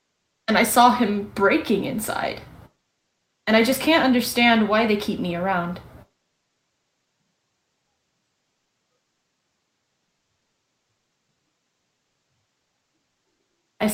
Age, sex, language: 10-29, female, English